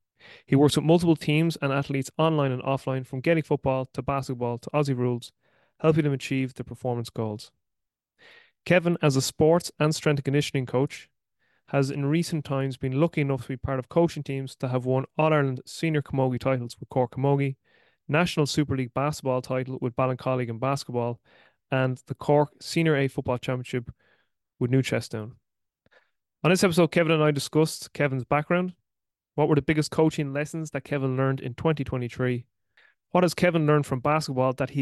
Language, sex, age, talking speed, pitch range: English, male, 30-49, 180 wpm, 130-150 Hz